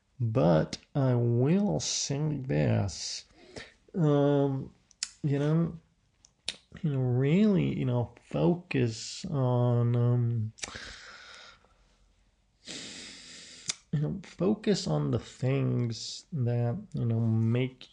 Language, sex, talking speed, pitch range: English, male, 85 wpm, 115-145 Hz